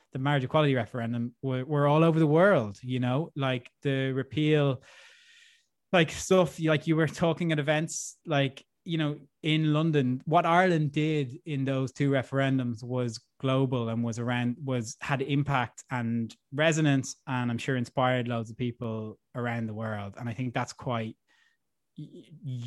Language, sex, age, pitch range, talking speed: English, male, 20-39, 120-150 Hz, 160 wpm